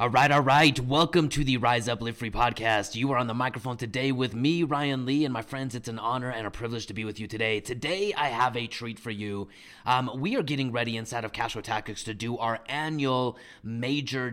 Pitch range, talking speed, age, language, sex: 115-135 Hz, 240 wpm, 30-49, English, male